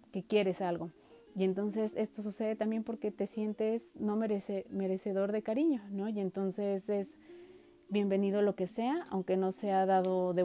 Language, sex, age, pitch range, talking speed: Spanish, female, 30-49, 190-230 Hz, 165 wpm